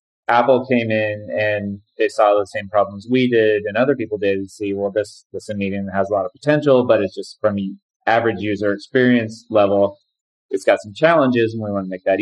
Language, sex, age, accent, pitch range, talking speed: English, male, 30-49, American, 100-115 Hz, 225 wpm